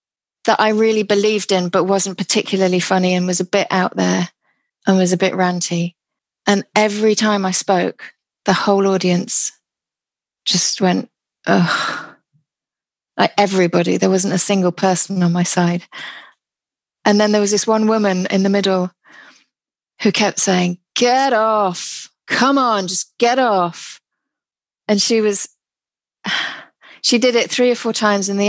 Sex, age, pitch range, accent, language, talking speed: female, 30-49, 185-210 Hz, British, English, 155 wpm